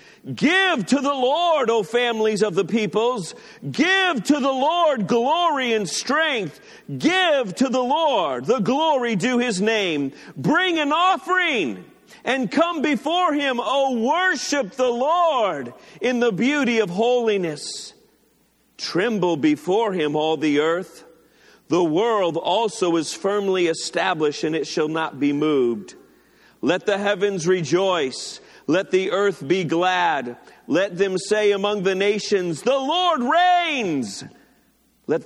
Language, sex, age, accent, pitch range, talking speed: English, male, 50-69, American, 185-275 Hz, 135 wpm